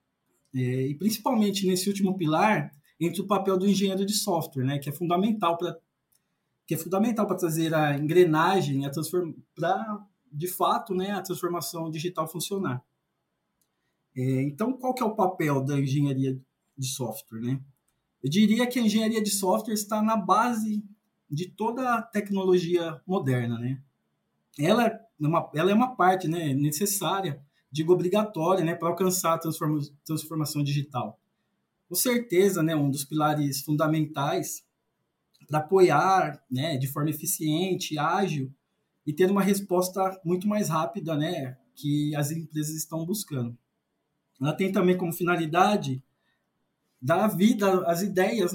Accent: Brazilian